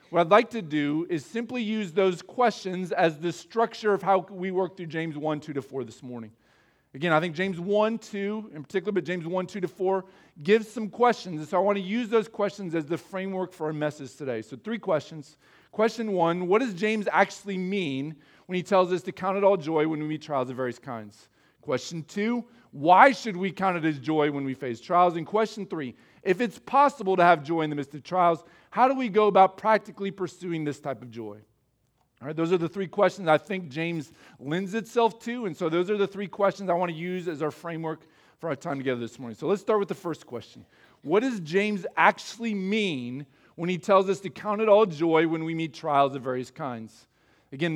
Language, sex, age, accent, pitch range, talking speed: English, male, 40-59, American, 150-200 Hz, 230 wpm